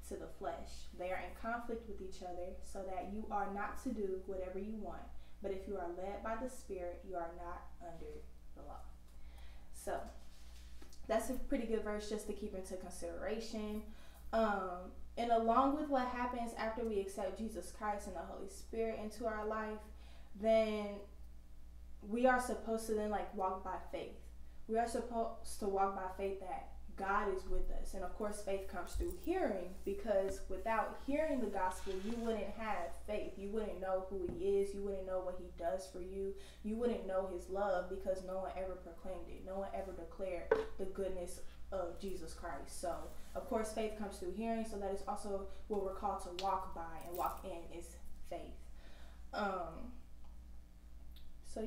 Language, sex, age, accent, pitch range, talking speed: English, female, 10-29, American, 180-220 Hz, 185 wpm